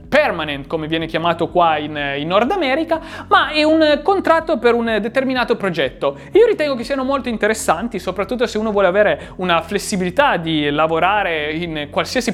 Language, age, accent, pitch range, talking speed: Italian, 30-49, native, 155-240 Hz, 165 wpm